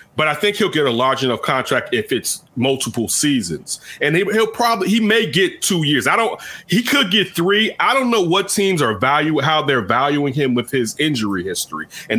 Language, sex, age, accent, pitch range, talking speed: English, male, 30-49, American, 115-150 Hz, 215 wpm